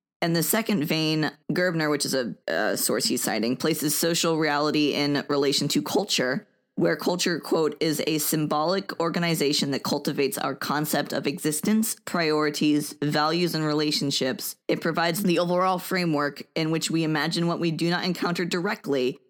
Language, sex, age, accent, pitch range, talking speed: English, female, 20-39, American, 150-175 Hz, 160 wpm